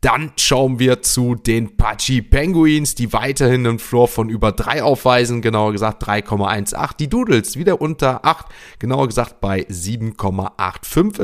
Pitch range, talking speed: 110-135 Hz, 145 wpm